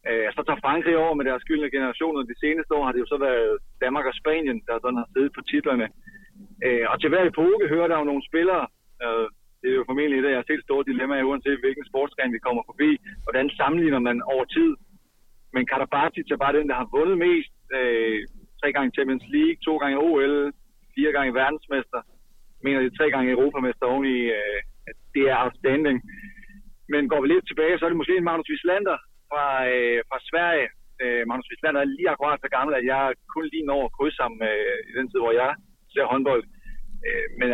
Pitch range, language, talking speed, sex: 130-165 Hz, Danish, 195 wpm, male